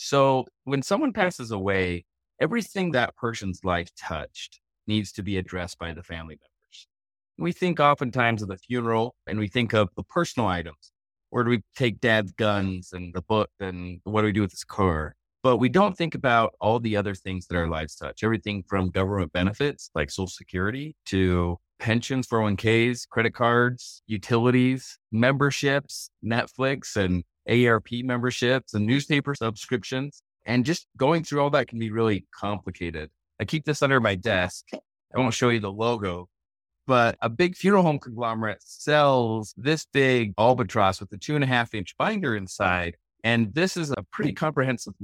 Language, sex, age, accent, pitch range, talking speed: English, male, 30-49, American, 95-130 Hz, 175 wpm